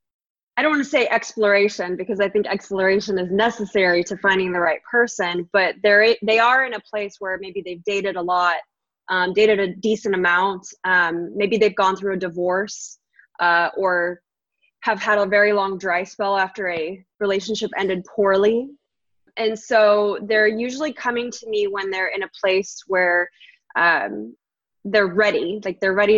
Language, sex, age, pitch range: English, female, 20-39, 195-230 Hz